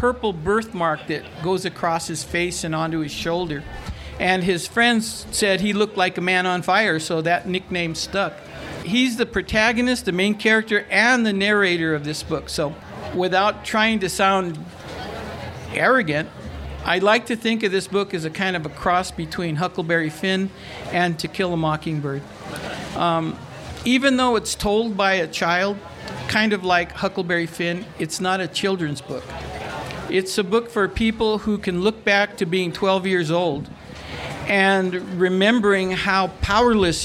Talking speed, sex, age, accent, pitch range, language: 165 wpm, male, 60-79, American, 165-205 Hz, English